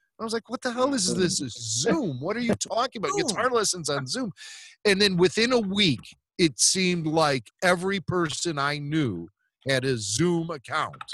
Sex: male